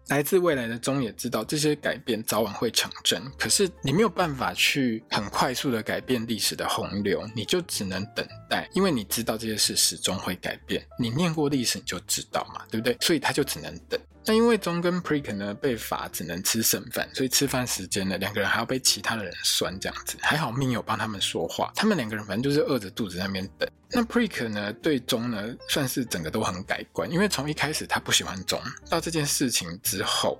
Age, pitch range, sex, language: 20-39, 110-145 Hz, male, Chinese